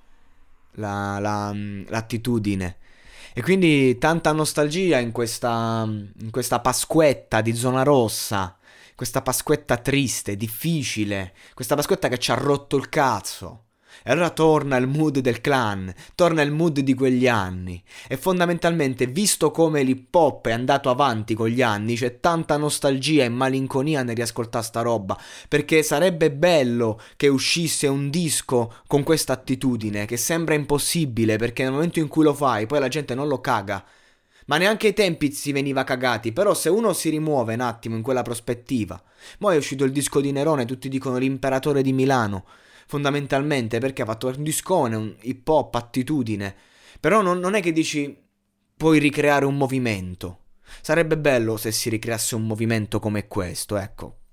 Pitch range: 110-145 Hz